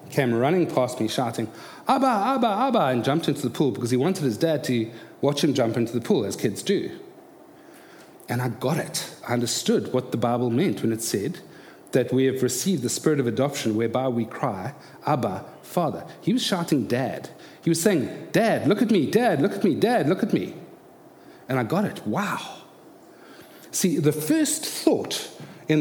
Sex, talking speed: male, 195 wpm